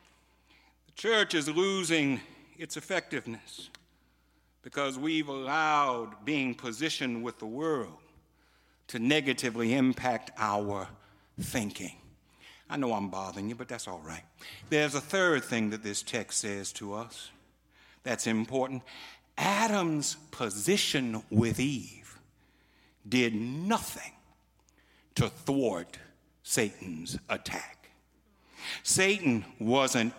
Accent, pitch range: American, 110-155 Hz